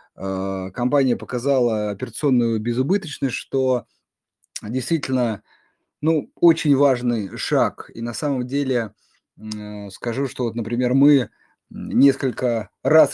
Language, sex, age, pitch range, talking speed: Russian, male, 20-39, 105-135 Hz, 95 wpm